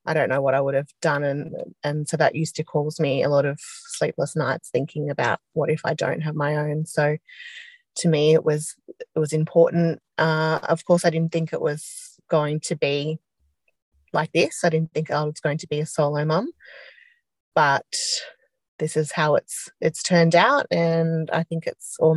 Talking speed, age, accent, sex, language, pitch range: 205 wpm, 30-49, Australian, female, English, 150-170 Hz